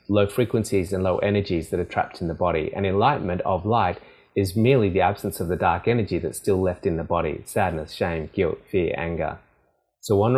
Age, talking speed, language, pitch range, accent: 30-49, 210 wpm, English, 85-100 Hz, Australian